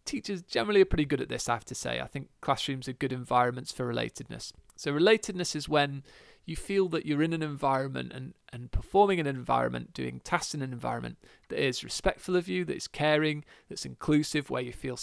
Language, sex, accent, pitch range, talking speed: English, male, British, 130-170 Hz, 215 wpm